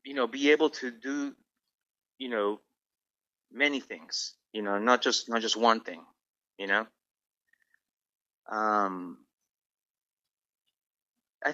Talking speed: 115 wpm